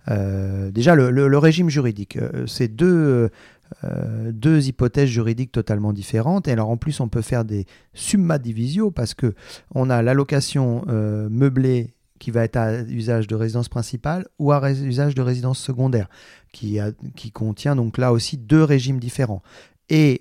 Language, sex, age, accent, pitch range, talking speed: French, male, 40-59, French, 110-135 Hz, 175 wpm